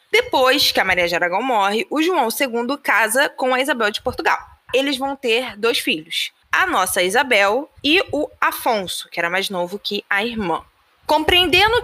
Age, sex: 20-39, female